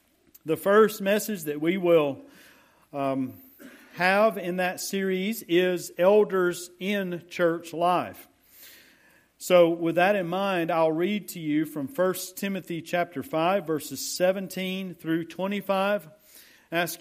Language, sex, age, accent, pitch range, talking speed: English, male, 50-69, American, 155-190 Hz, 125 wpm